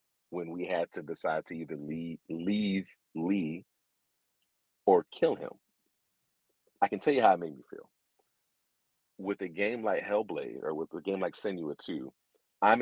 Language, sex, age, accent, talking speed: English, male, 40-59, American, 165 wpm